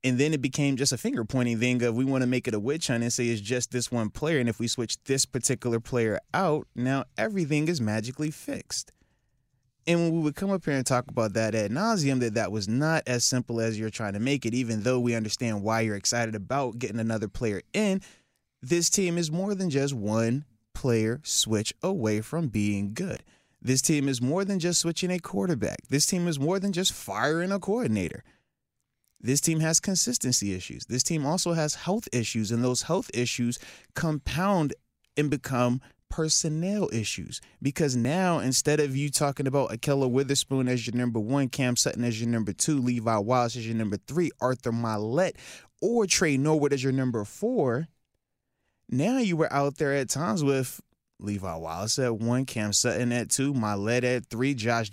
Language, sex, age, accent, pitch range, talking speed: English, male, 20-39, American, 115-150 Hz, 195 wpm